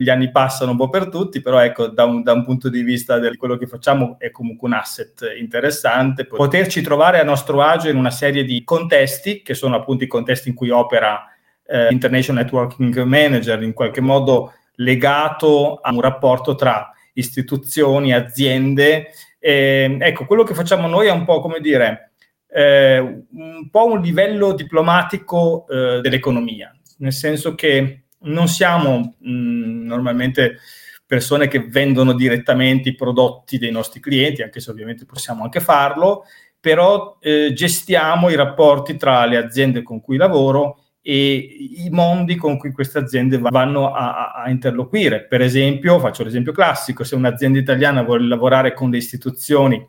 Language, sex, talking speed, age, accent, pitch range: Italian, male, 155 wpm, 30-49, native, 125-150 Hz